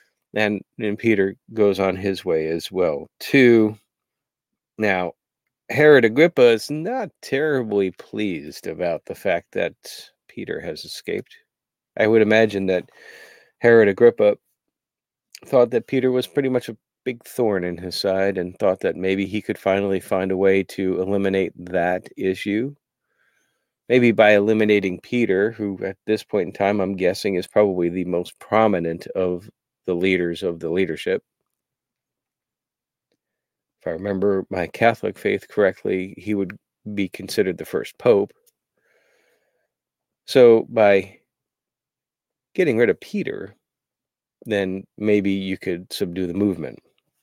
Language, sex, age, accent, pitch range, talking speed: English, male, 40-59, American, 95-120 Hz, 135 wpm